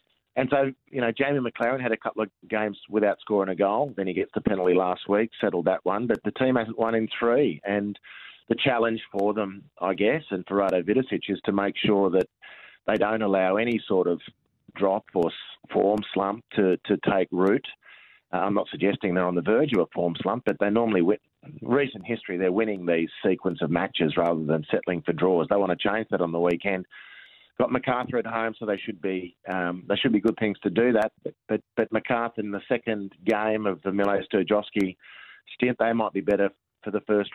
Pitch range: 95-115 Hz